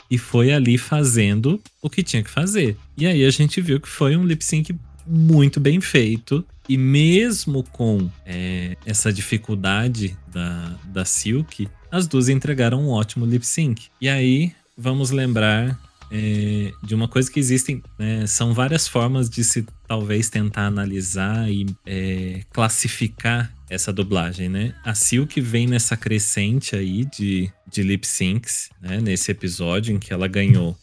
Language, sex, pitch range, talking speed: Portuguese, male, 95-135 Hz, 150 wpm